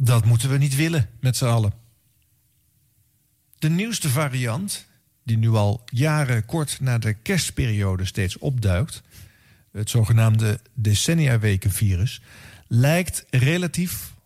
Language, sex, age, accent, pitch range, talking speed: Dutch, male, 50-69, Dutch, 110-145 Hz, 110 wpm